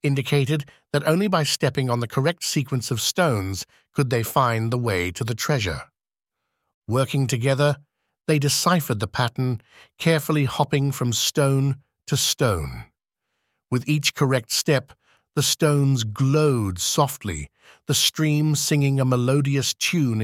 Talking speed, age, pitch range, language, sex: 135 wpm, 50-69, 120-150 Hz, English, male